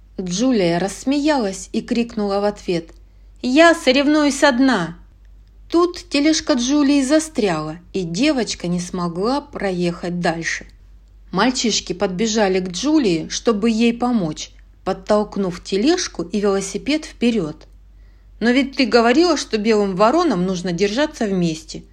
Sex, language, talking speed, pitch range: female, Russian, 110 wpm, 175-265 Hz